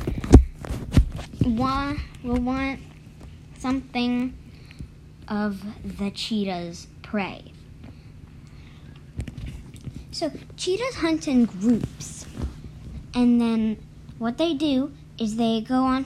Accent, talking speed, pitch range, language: American, 80 wpm, 205-275 Hz, English